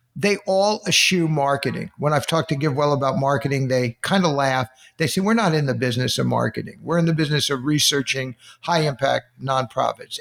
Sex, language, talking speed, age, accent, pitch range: male, English, 190 wpm, 60-79, American, 130-165 Hz